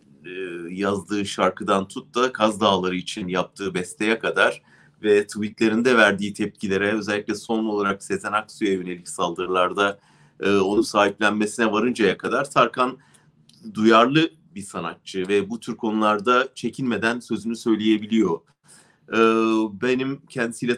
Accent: Turkish